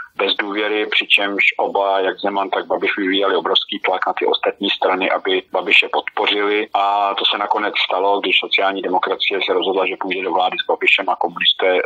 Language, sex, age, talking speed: Slovak, male, 40-59, 180 wpm